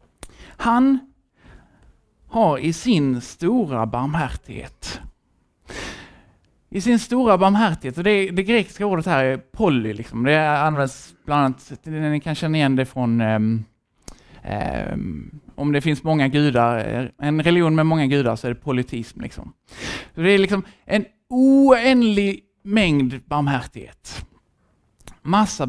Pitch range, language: 120-190 Hz, Swedish